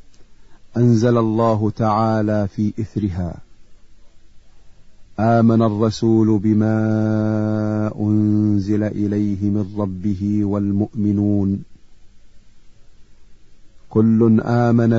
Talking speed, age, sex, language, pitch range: 60 wpm, 40-59, male, Arabic, 100-115 Hz